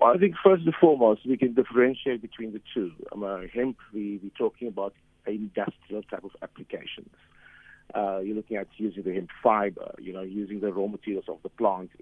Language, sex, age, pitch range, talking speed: English, male, 50-69, 100-115 Hz, 200 wpm